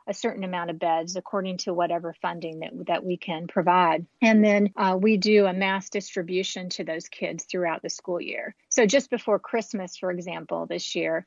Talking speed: 195 wpm